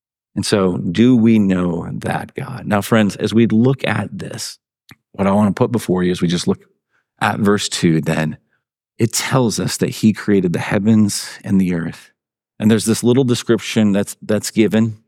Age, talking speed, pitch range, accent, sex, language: 40-59, 185 wpm, 105-120 Hz, American, male, English